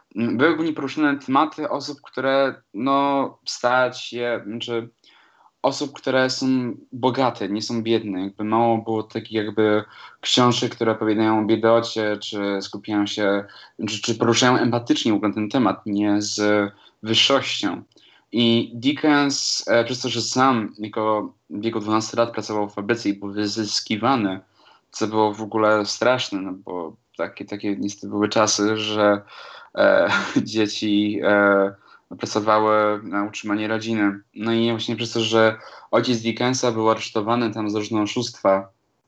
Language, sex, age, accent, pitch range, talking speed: Polish, male, 20-39, native, 105-120 Hz, 140 wpm